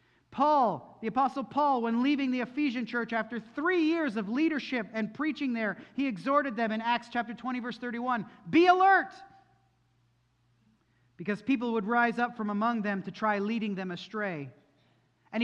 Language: English